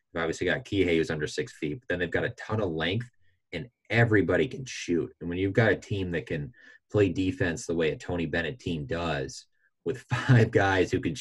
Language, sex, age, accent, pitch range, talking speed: English, male, 20-39, American, 80-105 Hz, 220 wpm